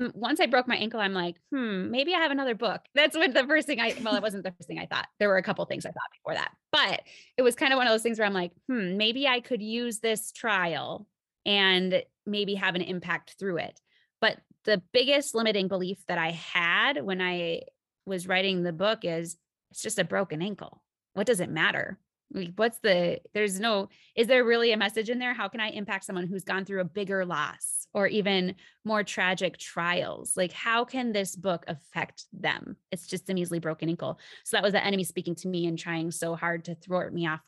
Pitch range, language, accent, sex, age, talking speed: 180-230 Hz, English, American, female, 20-39, 225 wpm